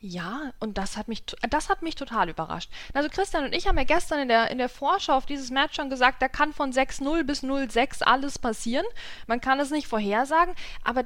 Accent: German